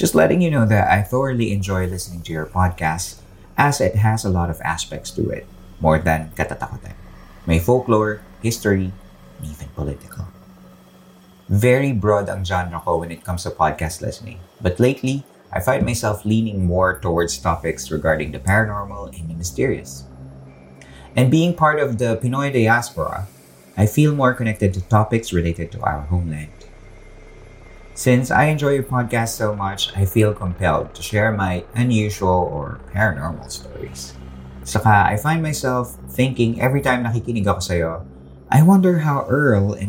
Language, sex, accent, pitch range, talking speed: Filipino, male, native, 85-115 Hz, 160 wpm